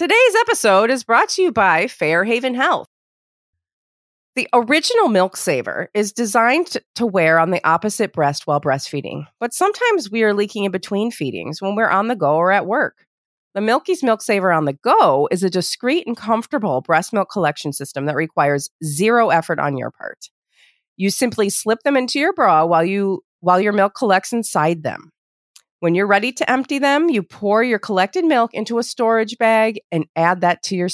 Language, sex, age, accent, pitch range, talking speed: English, female, 30-49, American, 160-225 Hz, 185 wpm